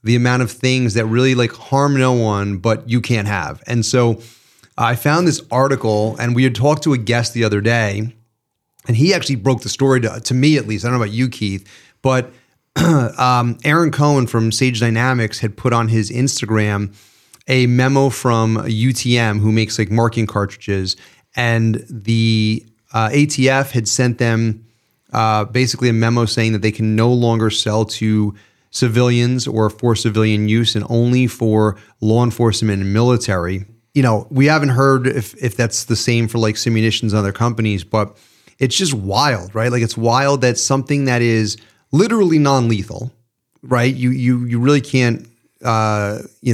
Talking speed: 180 wpm